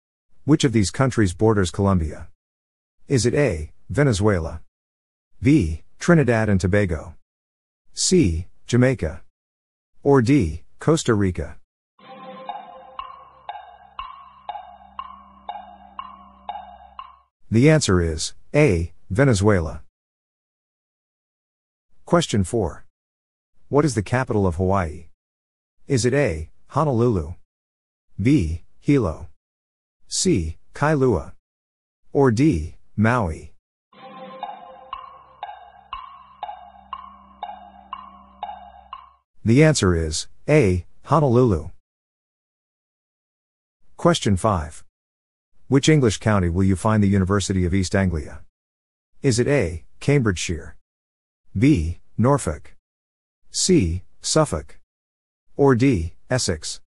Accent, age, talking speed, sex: American, 50-69, 75 wpm, male